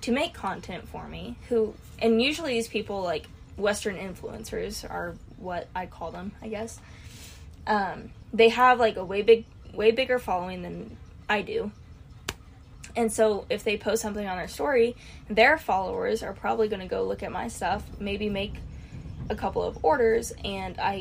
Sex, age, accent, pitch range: female, 10-29, American, 200-255 Hz